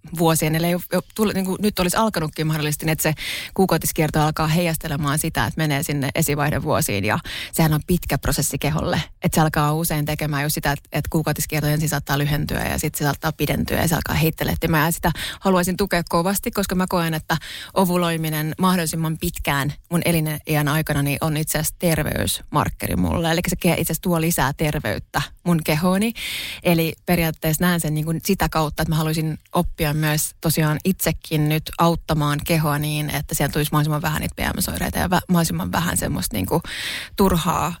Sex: female